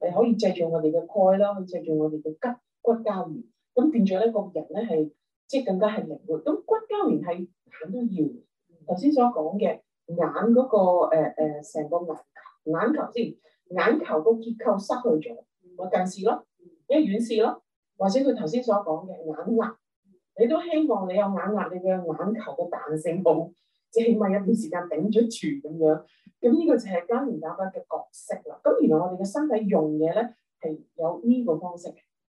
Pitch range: 170-230 Hz